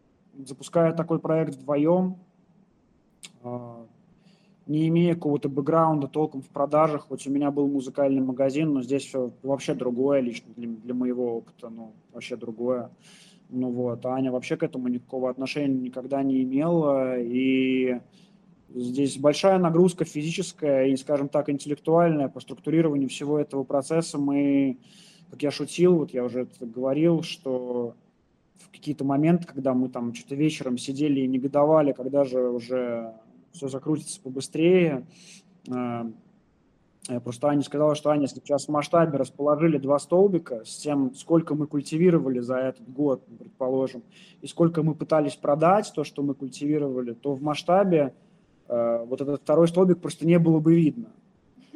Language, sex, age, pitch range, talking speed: Russian, male, 20-39, 130-165 Hz, 145 wpm